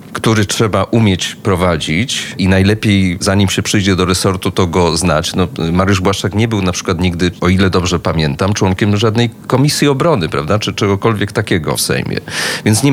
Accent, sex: native, male